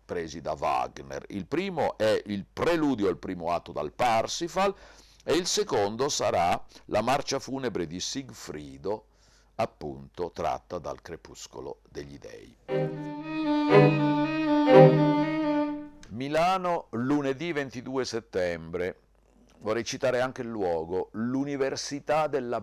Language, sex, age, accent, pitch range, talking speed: Italian, male, 50-69, native, 95-140 Hz, 105 wpm